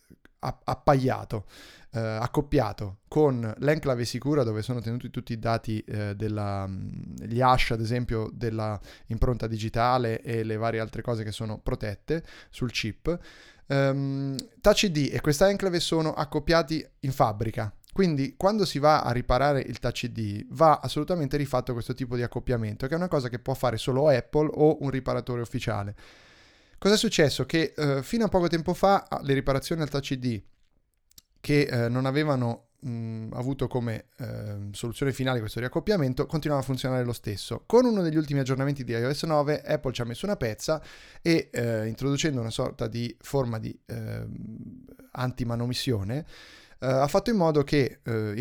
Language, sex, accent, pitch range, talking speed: Italian, male, native, 115-150 Hz, 160 wpm